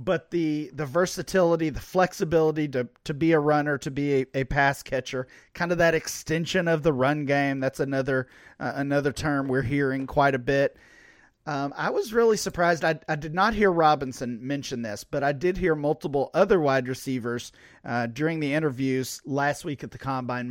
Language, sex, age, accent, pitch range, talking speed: English, male, 40-59, American, 130-160 Hz, 190 wpm